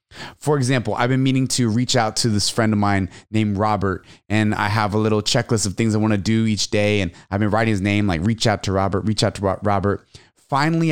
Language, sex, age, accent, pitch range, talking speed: English, male, 30-49, American, 105-130 Hz, 245 wpm